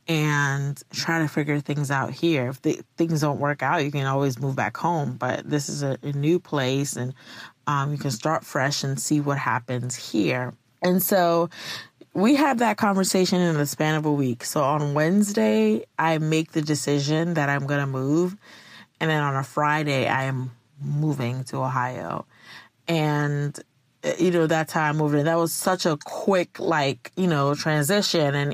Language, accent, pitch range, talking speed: English, American, 140-165 Hz, 185 wpm